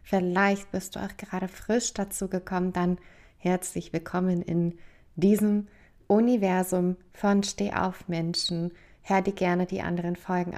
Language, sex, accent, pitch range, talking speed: German, female, German, 175-200 Hz, 135 wpm